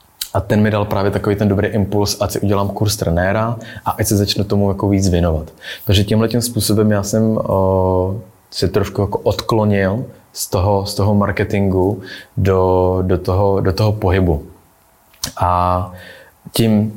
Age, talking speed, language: 20-39, 155 wpm, Czech